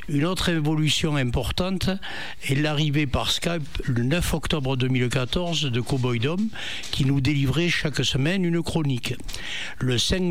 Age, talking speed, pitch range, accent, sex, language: 60-79, 140 wpm, 125-160 Hz, French, male, French